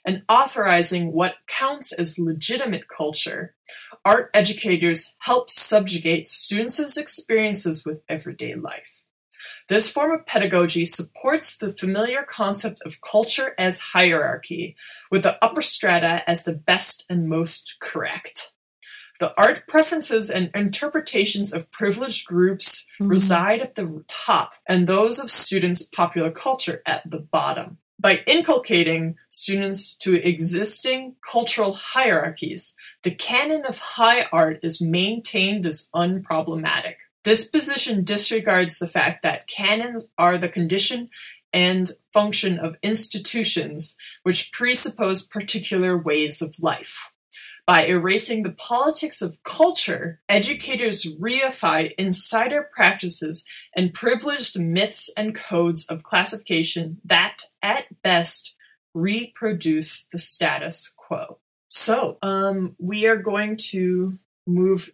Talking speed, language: 115 wpm, English